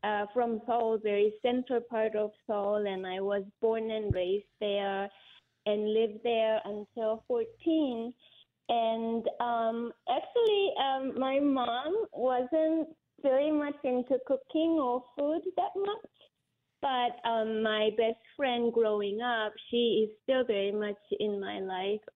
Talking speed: 135 wpm